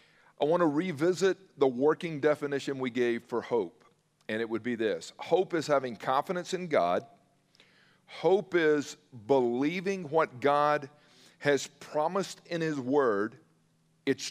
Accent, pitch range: American, 135-175 Hz